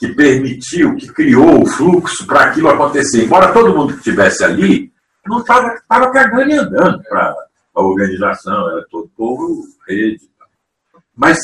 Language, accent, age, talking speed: Portuguese, Brazilian, 60-79, 145 wpm